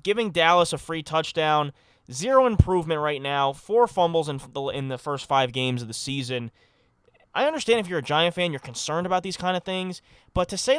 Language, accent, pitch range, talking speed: English, American, 125-185 Hz, 205 wpm